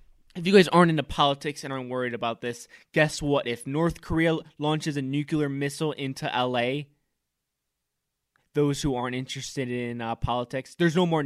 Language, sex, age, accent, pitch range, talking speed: English, male, 20-39, American, 125-165 Hz, 170 wpm